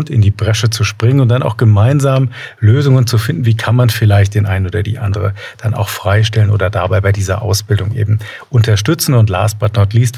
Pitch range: 105-125 Hz